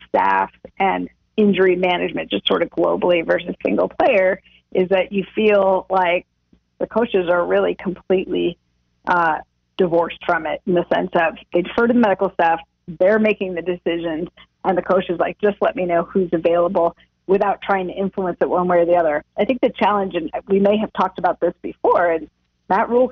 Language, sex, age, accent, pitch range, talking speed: English, female, 40-59, American, 180-225 Hz, 195 wpm